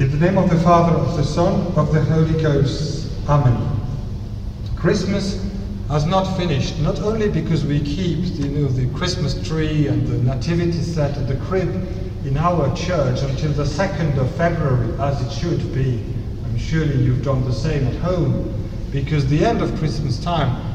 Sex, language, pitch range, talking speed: male, English, 115-150 Hz, 170 wpm